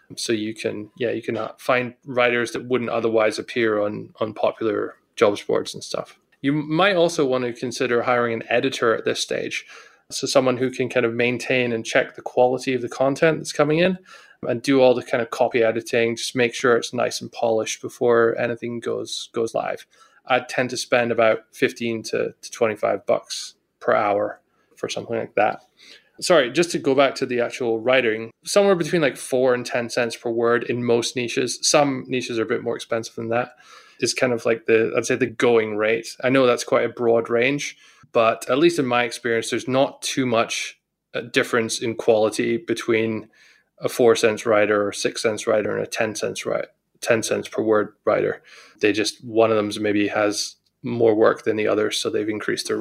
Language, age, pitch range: English, 20-39, 115-130 Hz